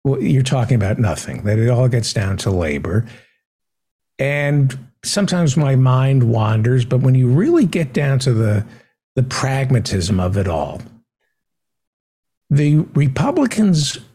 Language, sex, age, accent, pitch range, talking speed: English, male, 60-79, American, 110-135 Hz, 135 wpm